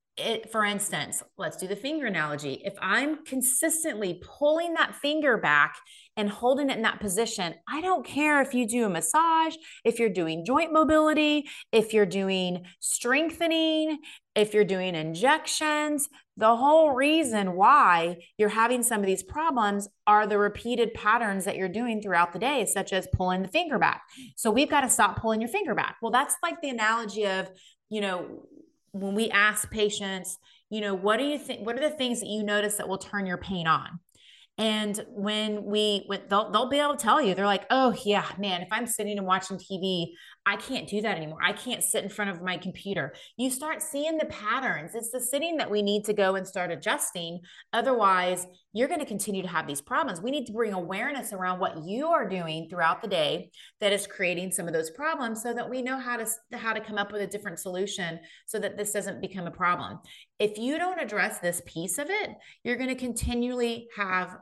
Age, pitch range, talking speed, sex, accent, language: 30-49, 190-260 Hz, 205 wpm, female, American, English